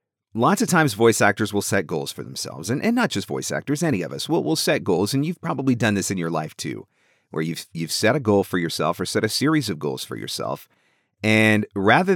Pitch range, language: 100-125 Hz, English